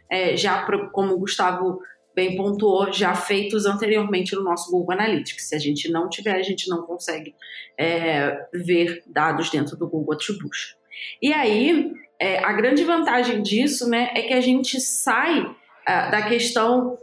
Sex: female